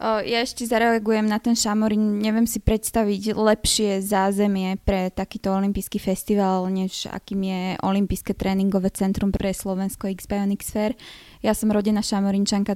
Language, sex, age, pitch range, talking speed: Slovak, female, 20-39, 190-215 Hz, 130 wpm